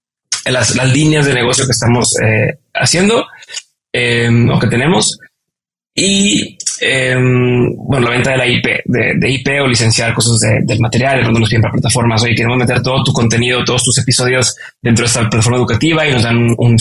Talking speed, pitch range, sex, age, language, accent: 195 wpm, 120-150 Hz, male, 20-39, Spanish, Mexican